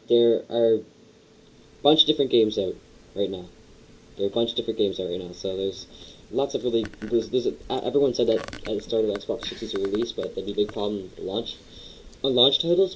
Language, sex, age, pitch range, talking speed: English, male, 10-29, 105-150 Hz, 235 wpm